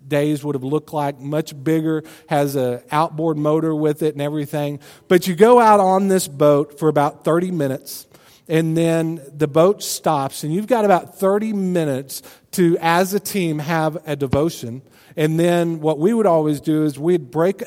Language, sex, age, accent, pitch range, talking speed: English, male, 40-59, American, 135-175 Hz, 185 wpm